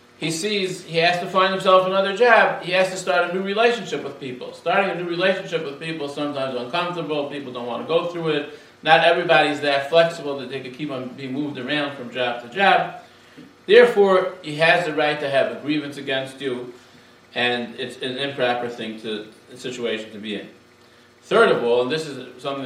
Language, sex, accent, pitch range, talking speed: English, male, American, 130-185 Hz, 210 wpm